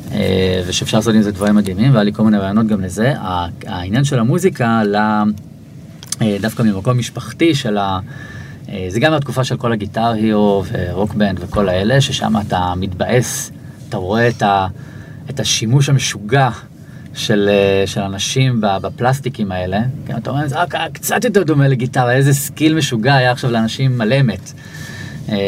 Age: 20-39